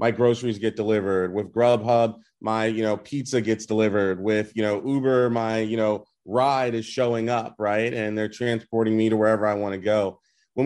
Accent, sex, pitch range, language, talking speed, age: American, male, 110-125 Hz, English, 195 wpm, 30-49